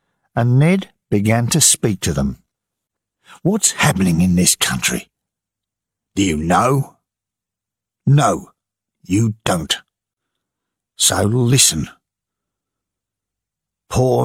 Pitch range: 95-130 Hz